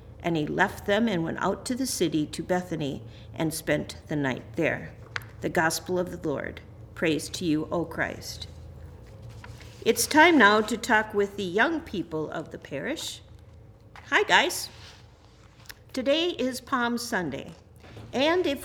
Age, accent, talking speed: 50-69, American, 150 wpm